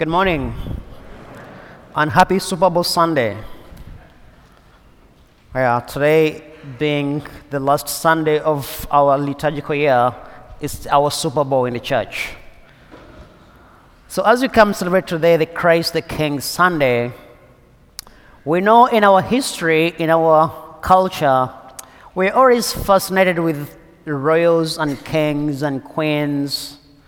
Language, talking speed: English, 115 wpm